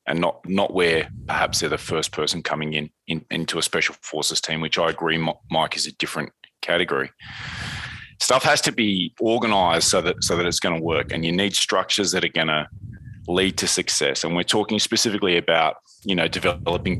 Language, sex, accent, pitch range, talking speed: English, male, Australian, 85-100 Hz, 200 wpm